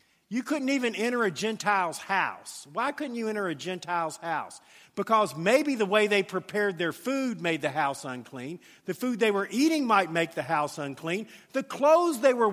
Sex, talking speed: male, 190 wpm